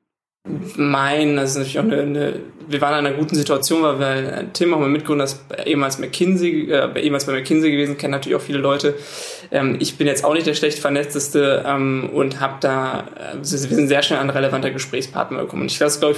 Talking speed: 215 wpm